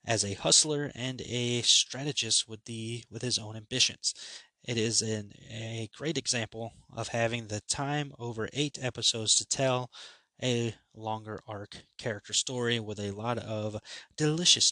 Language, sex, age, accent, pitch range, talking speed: English, male, 20-39, American, 105-125 Hz, 150 wpm